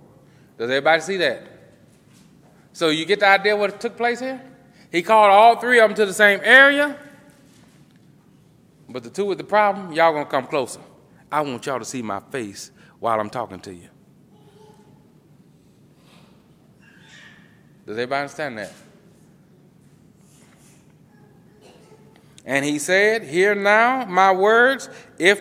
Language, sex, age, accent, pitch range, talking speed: English, male, 30-49, American, 150-205 Hz, 135 wpm